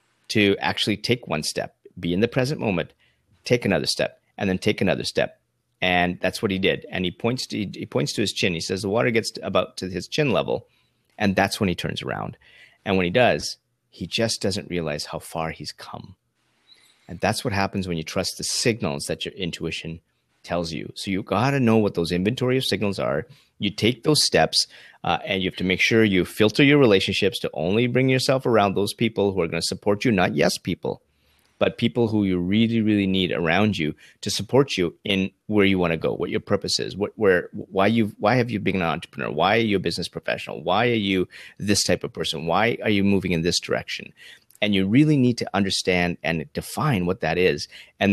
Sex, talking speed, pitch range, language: male, 220 wpm, 90-110 Hz, English